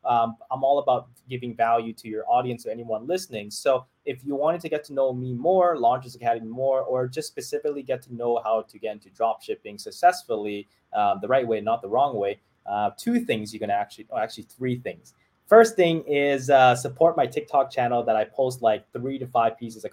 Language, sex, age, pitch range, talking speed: English, male, 20-39, 105-135 Hz, 225 wpm